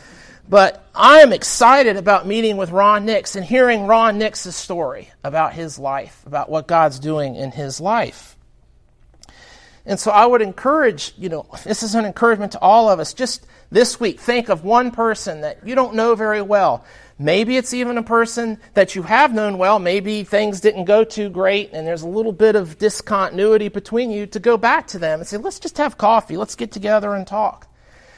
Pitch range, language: 185-230 Hz, English